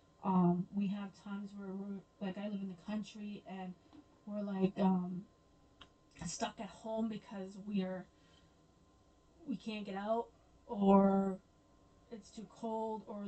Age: 20-39